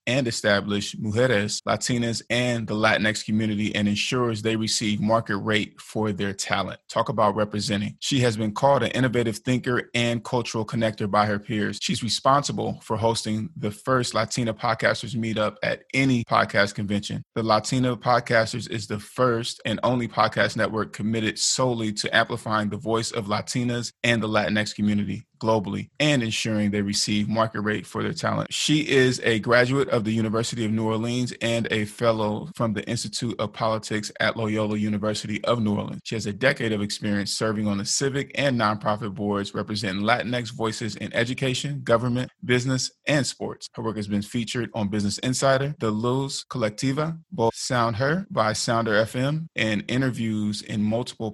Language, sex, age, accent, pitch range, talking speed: English, male, 20-39, American, 105-125 Hz, 170 wpm